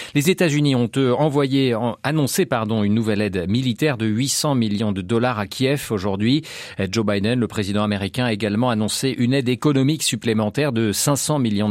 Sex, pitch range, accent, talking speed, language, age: male, 105-140 Hz, French, 180 wpm, French, 40-59